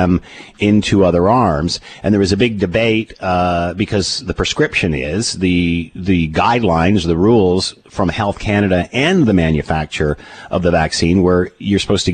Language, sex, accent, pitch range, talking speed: English, male, American, 90-115 Hz, 160 wpm